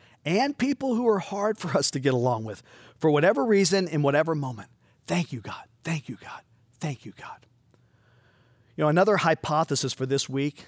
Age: 50-69